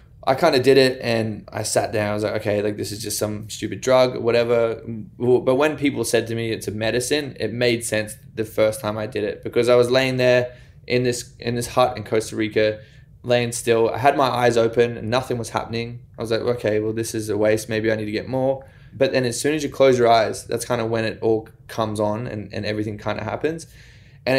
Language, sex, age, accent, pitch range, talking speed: English, male, 20-39, Australian, 110-130 Hz, 255 wpm